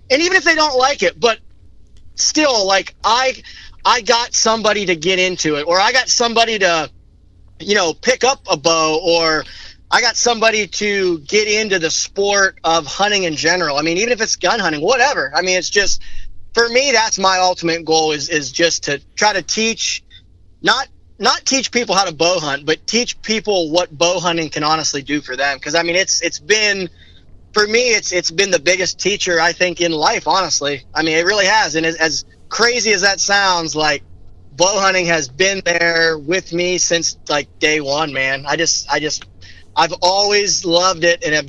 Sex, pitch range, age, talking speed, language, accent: male, 155-195 Hz, 30-49, 205 wpm, English, American